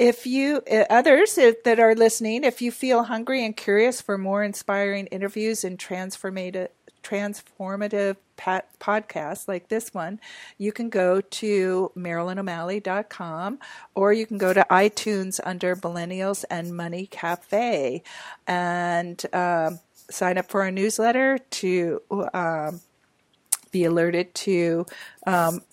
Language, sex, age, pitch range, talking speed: English, female, 50-69, 185-215 Hz, 125 wpm